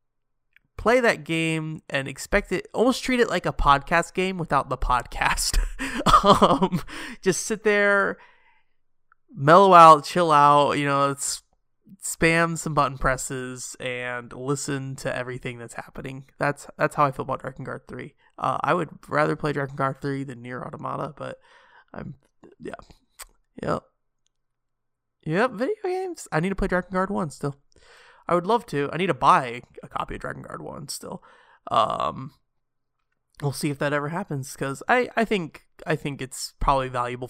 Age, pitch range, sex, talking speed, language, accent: 20-39, 130-170 Hz, male, 170 wpm, English, American